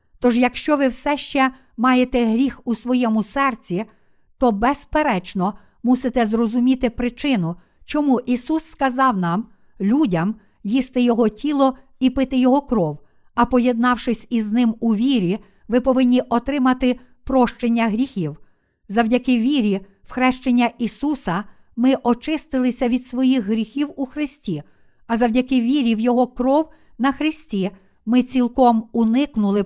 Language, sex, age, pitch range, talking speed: Ukrainian, female, 50-69, 220-260 Hz, 125 wpm